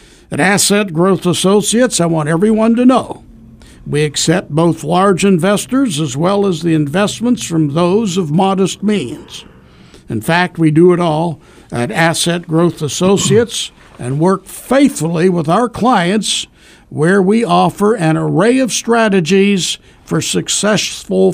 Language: English